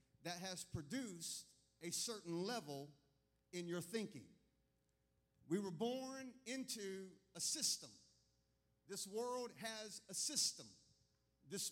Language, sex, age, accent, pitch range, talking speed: English, male, 50-69, American, 135-225 Hz, 110 wpm